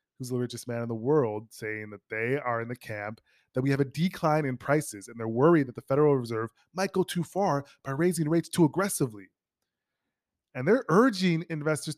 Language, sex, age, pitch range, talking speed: English, male, 20-39, 110-145 Hz, 205 wpm